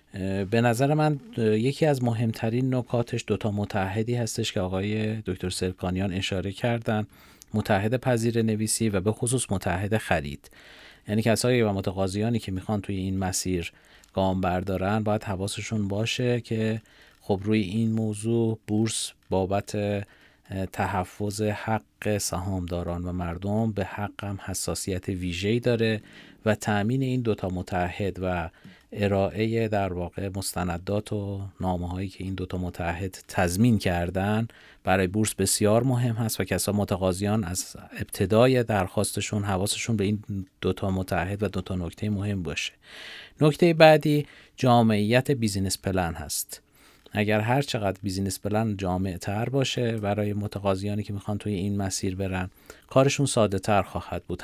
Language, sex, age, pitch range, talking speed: Persian, male, 40-59, 95-115 Hz, 135 wpm